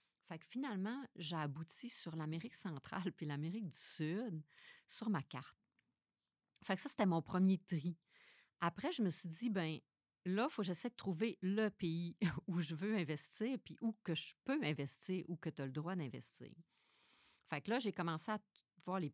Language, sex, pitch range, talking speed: French, female, 145-180 Hz, 195 wpm